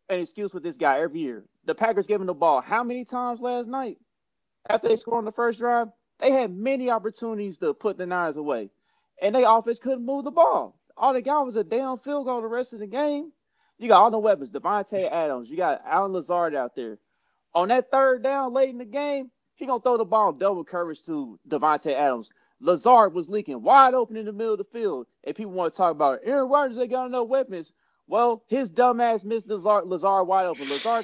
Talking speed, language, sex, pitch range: 230 wpm, English, male, 190-255 Hz